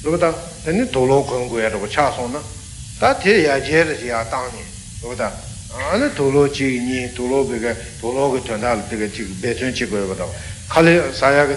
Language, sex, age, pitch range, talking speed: Italian, male, 60-79, 110-145 Hz, 125 wpm